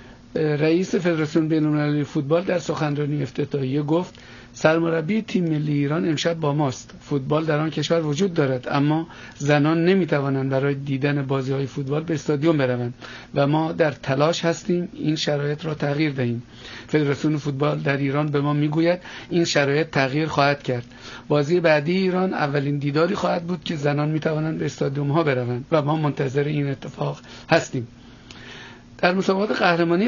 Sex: male